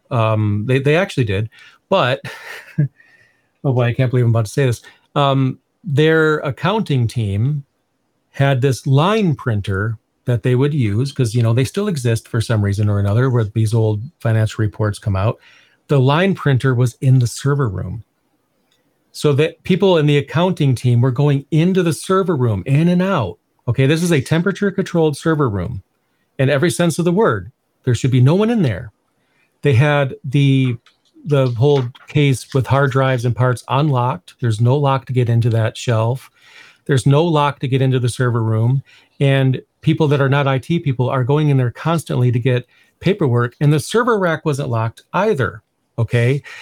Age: 40-59